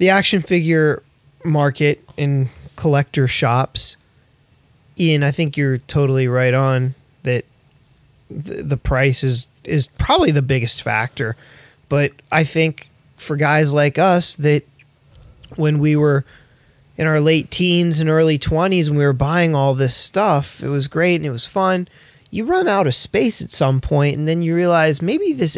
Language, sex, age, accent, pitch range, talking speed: English, male, 20-39, American, 135-165 Hz, 165 wpm